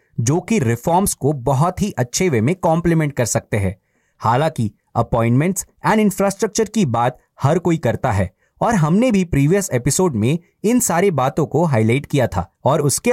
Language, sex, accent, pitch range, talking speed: Hindi, male, native, 120-185 Hz, 175 wpm